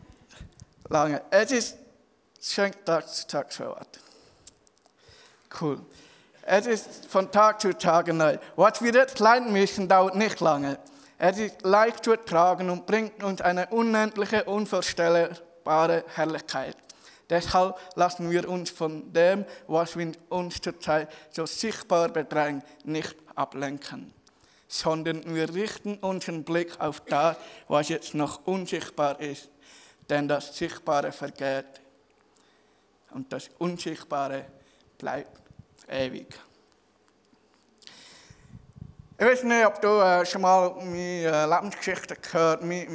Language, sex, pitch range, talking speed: German, male, 160-190 Hz, 115 wpm